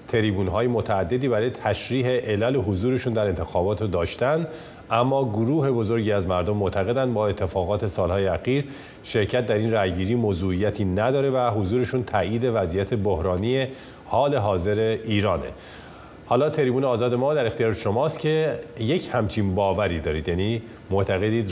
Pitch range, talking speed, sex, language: 95-125 Hz, 135 wpm, male, Persian